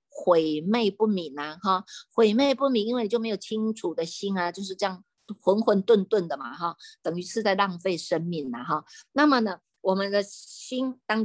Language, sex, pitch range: Chinese, female, 175-235 Hz